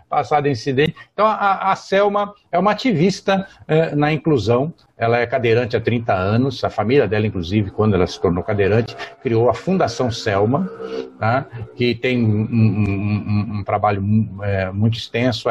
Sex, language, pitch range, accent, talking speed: male, Portuguese, 110-140 Hz, Brazilian, 165 wpm